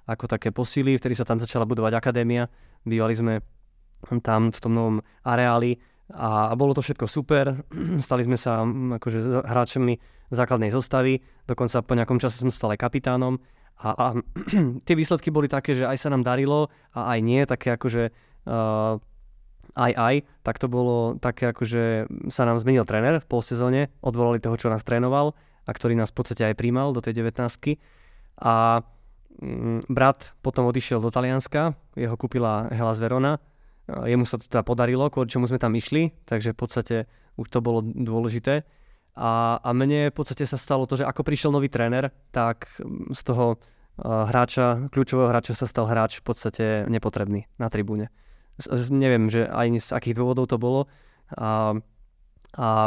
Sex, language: male, Slovak